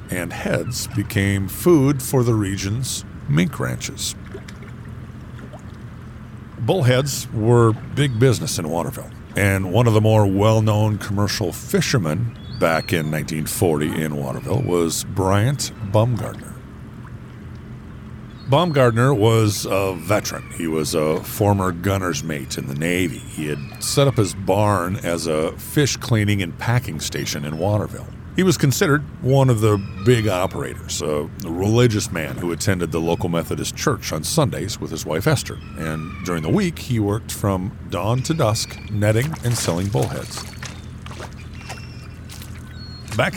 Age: 50-69